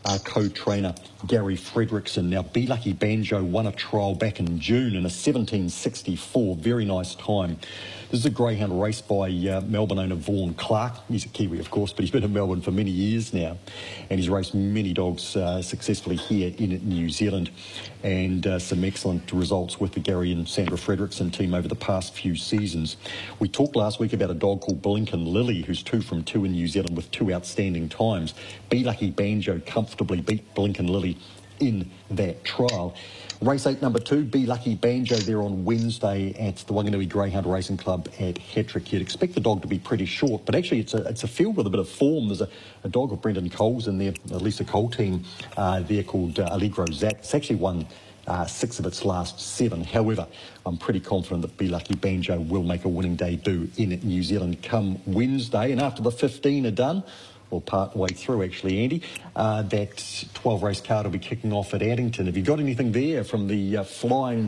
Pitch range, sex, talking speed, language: 95-110 Hz, male, 205 wpm, English